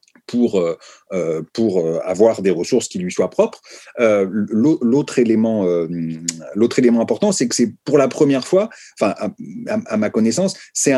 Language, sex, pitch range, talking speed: French, male, 105-150 Hz, 165 wpm